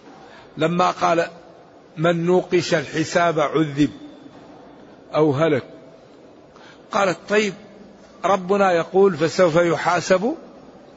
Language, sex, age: Arabic, male, 60-79